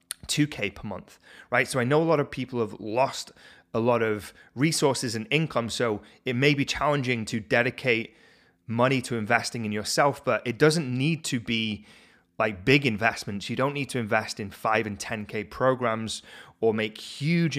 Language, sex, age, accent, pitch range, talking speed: English, male, 30-49, British, 110-135 Hz, 180 wpm